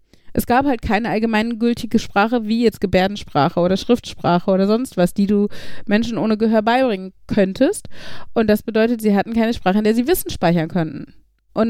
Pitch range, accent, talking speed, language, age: 195-250 Hz, German, 180 wpm, German, 30-49